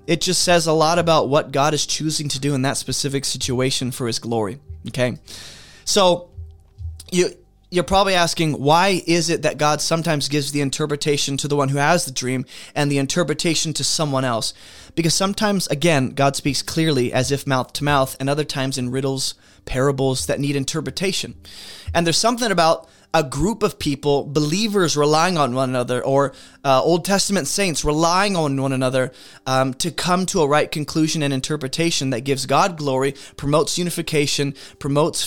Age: 20-39